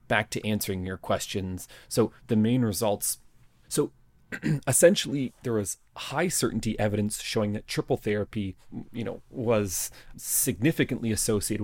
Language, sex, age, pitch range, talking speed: English, male, 30-49, 95-115 Hz, 130 wpm